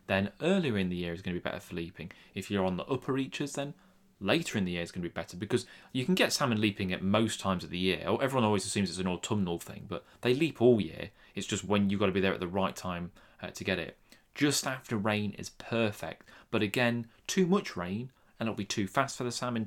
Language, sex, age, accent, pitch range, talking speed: English, male, 30-49, British, 90-120 Hz, 260 wpm